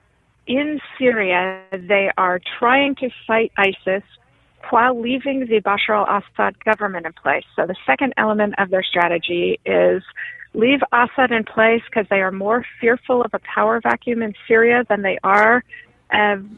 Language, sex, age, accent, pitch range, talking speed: English, female, 40-59, American, 190-230 Hz, 155 wpm